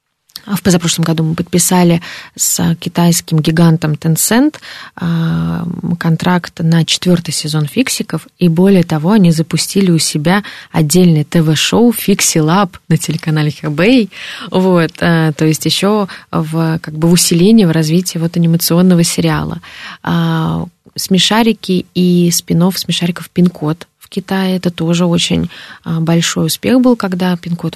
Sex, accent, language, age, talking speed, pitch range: female, native, Russian, 20-39, 130 wpm, 160-185 Hz